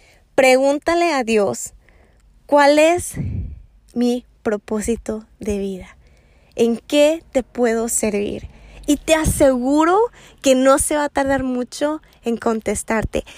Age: 20-39